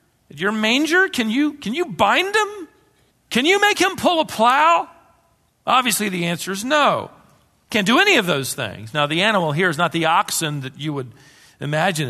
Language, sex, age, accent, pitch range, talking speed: English, male, 40-59, American, 130-190 Hz, 190 wpm